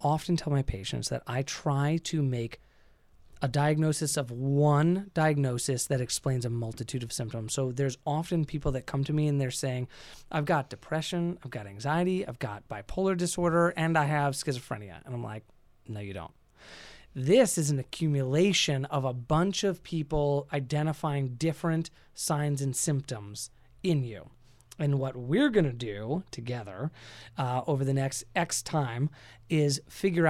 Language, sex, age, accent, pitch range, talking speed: English, male, 30-49, American, 120-155 Hz, 160 wpm